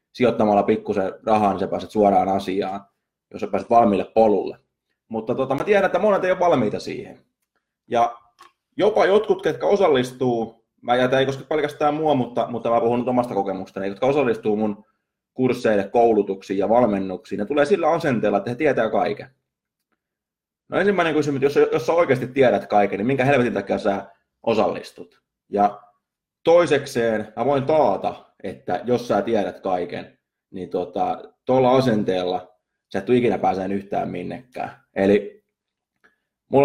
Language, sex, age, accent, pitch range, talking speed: Finnish, male, 20-39, native, 100-130 Hz, 150 wpm